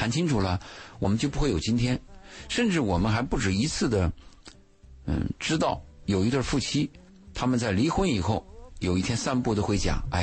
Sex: male